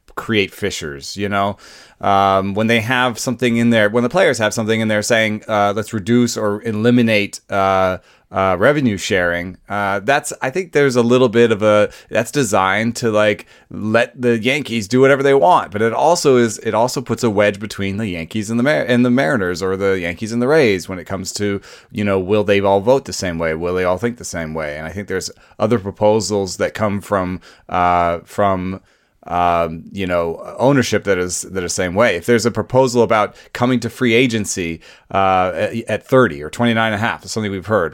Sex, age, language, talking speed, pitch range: male, 30-49, English, 215 wpm, 100-125 Hz